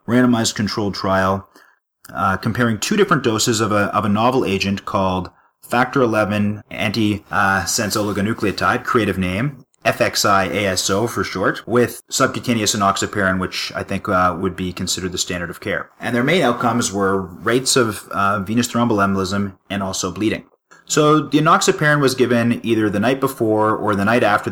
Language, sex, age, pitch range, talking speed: English, male, 30-49, 95-120 Hz, 160 wpm